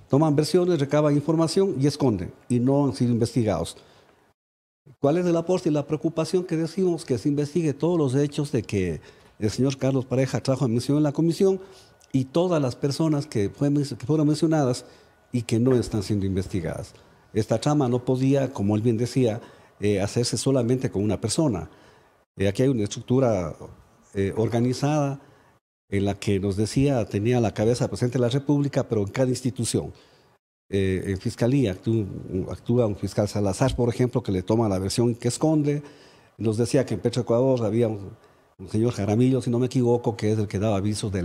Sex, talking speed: male, 185 wpm